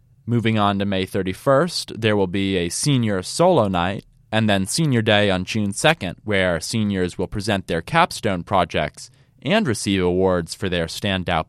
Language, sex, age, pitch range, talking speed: English, male, 20-39, 95-125 Hz, 165 wpm